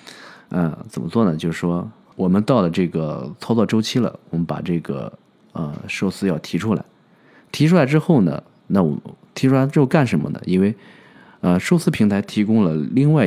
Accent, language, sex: native, Chinese, male